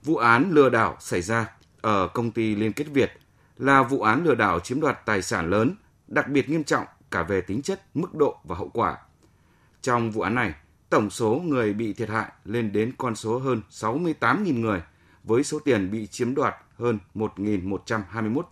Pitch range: 100-135 Hz